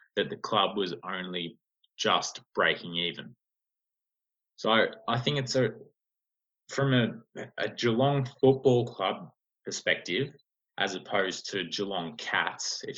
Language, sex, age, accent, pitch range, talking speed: English, male, 20-39, Australian, 110-135 Hz, 120 wpm